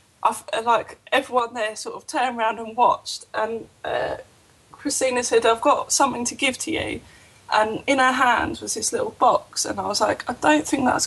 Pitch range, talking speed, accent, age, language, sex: 215-270 Hz, 200 wpm, British, 10-29, English, female